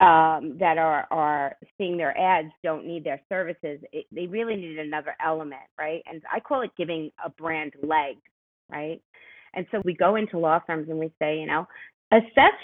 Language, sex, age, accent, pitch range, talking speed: English, female, 30-49, American, 160-220 Hz, 190 wpm